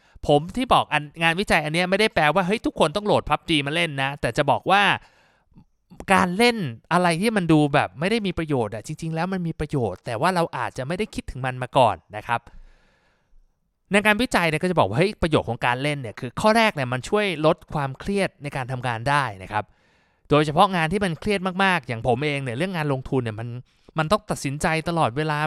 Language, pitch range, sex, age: Thai, 135-185 Hz, male, 20-39